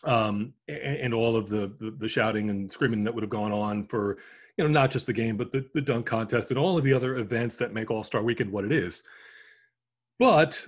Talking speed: 235 wpm